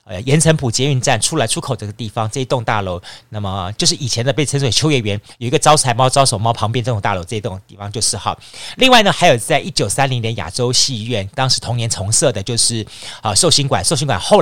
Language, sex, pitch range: Chinese, male, 100-140 Hz